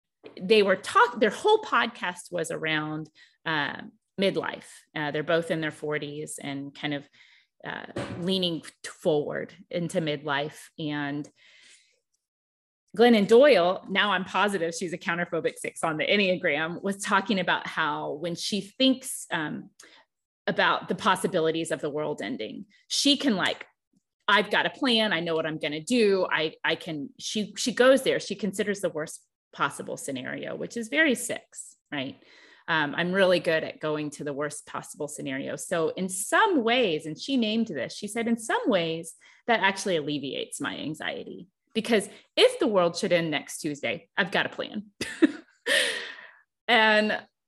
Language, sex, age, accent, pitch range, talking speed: English, female, 30-49, American, 155-220 Hz, 160 wpm